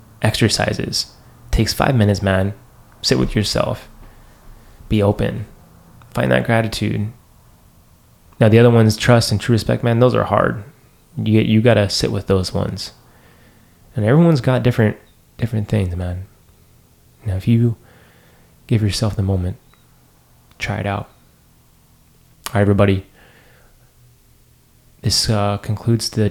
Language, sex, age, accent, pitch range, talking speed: English, male, 20-39, American, 100-115 Hz, 130 wpm